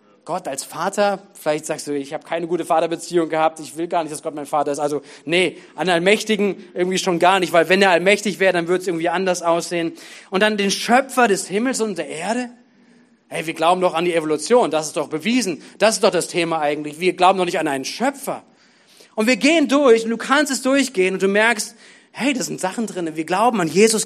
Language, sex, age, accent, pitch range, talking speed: German, male, 30-49, German, 170-230 Hz, 235 wpm